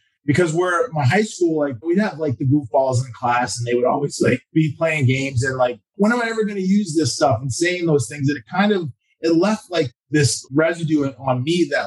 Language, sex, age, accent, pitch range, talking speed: English, male, 20-39, American, 130-175 Hz, 240 wpm